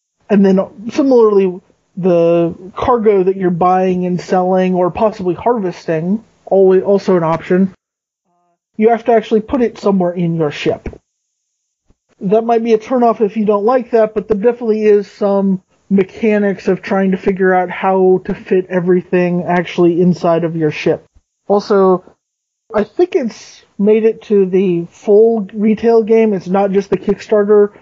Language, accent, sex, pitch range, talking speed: English, American, male, 180-210 Hz, 155 wpm